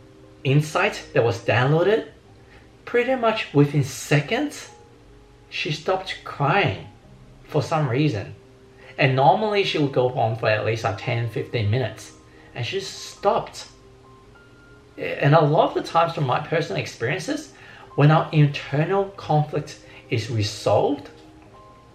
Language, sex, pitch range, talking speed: English, male, 115-150 Hz, 120 wpm